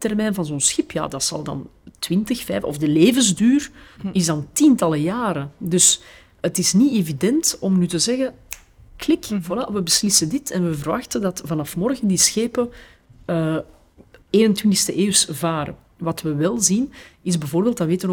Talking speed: 170 wpm